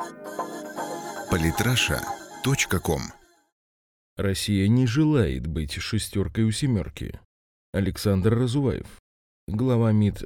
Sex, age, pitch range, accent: male, 30-49, 85-120 Hz, native